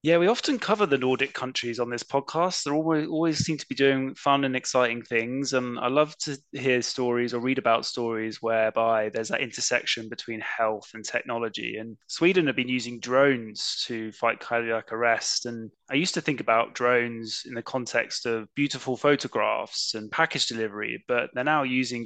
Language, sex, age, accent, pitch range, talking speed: English, male, 20-39, British, 115-140 Hz, 185 wpm